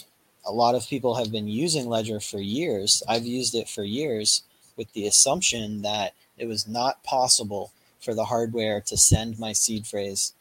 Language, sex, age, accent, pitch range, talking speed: English, male, 20-39, American, 100-115 Hz, 180 wpm